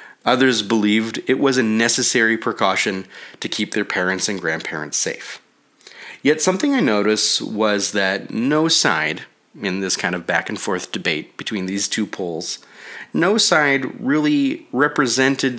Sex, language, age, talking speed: male, English, 30-49, 140 wpm